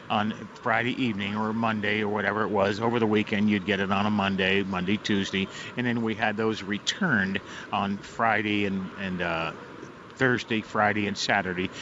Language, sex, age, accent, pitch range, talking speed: English, male, 50-69, American, 100-115 Hz, 180 wpm